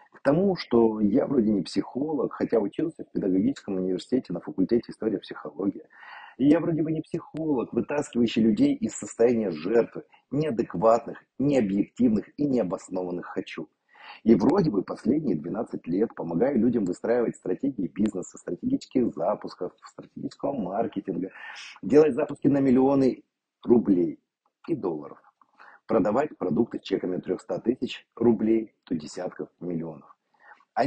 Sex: male